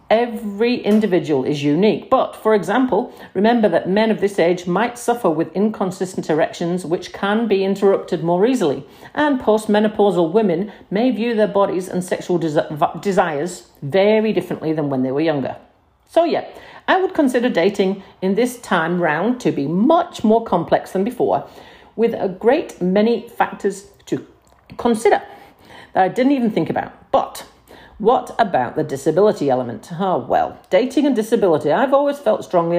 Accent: British